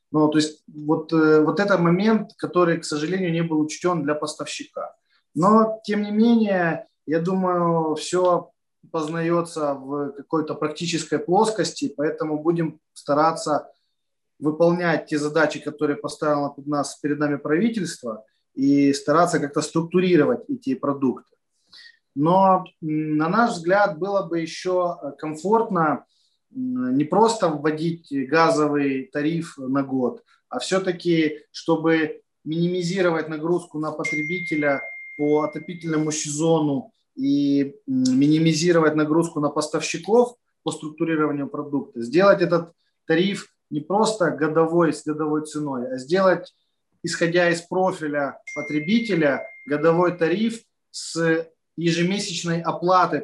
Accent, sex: native, male